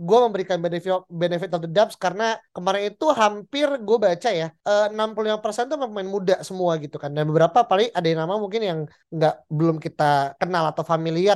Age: 20-39